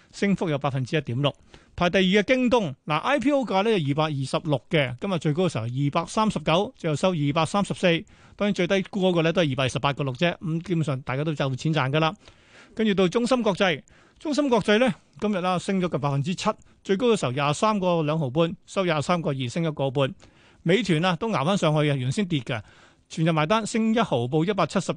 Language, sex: Chinese, male